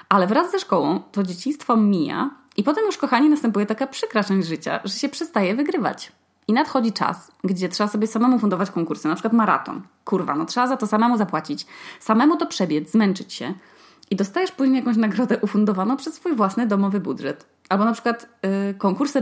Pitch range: 185-245 Hz